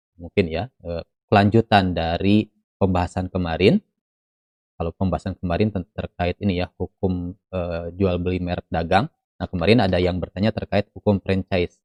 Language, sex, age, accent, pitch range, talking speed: Indonesian, male, 20-39, native, 90-105 Hz, 130 wpm